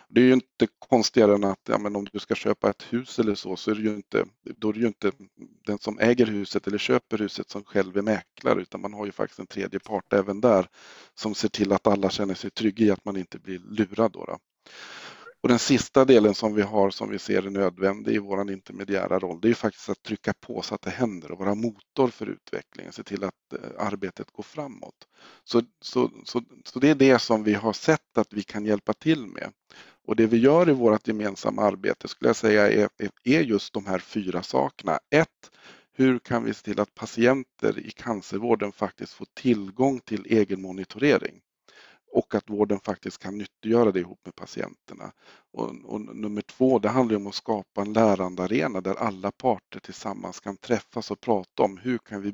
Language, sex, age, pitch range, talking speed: Swedish, male, 50-69, 100-115 Hz, 210 wpm